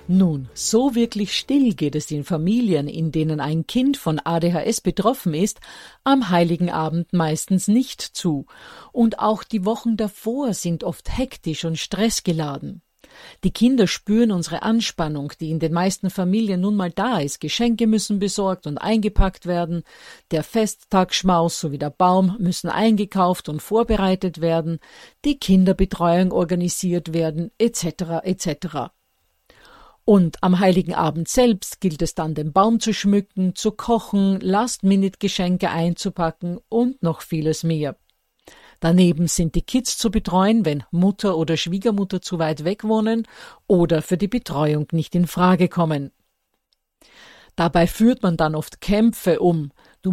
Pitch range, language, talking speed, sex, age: 165-215 Hz, German, 140 wpm, female, 50-69